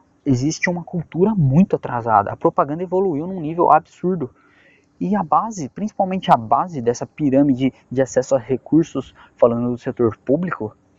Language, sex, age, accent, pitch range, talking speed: Portuguese, male, 20-39, Brazilian, 130-185 Hz, 145 wpm